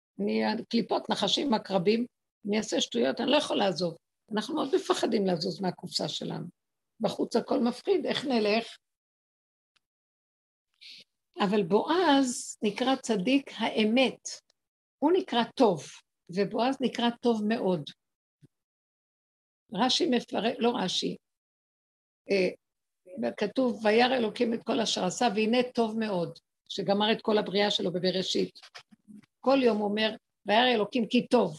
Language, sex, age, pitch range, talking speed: Hebrew, female, 60-79, 210-260 Hz, 115 wpm